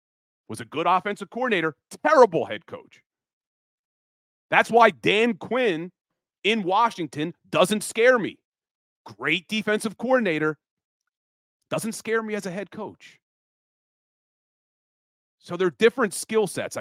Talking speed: 115 wpm